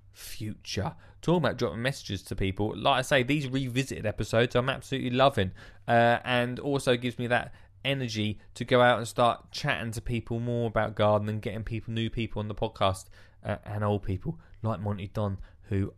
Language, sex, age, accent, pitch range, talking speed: English, male, 20-39, British, 100-125 Hz, 185 wpm